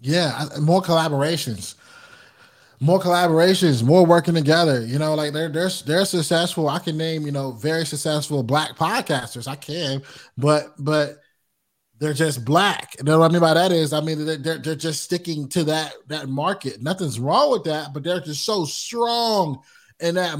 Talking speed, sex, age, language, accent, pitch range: 175 wpm, male, 20-39, English, American, 140-170 Hz